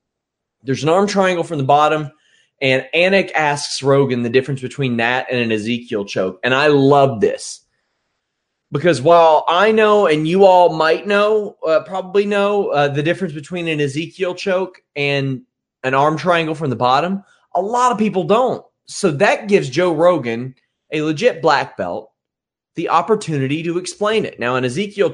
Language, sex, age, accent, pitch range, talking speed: English, male, 30-49, American, 125-180 Hz, 170 wpm